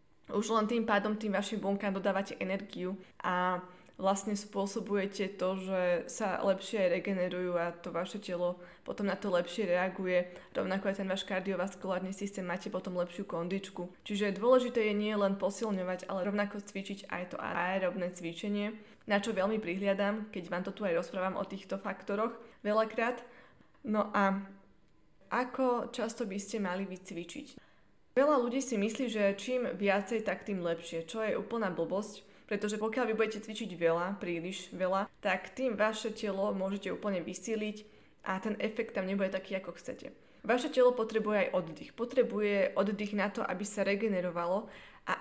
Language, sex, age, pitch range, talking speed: Slovak, female, 20-39, 185-220 Hz, 160 wpm